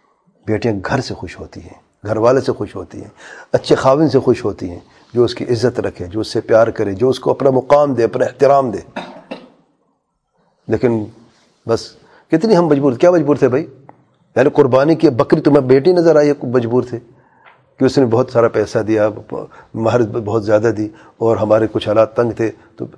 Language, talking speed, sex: English, 195 wpm, male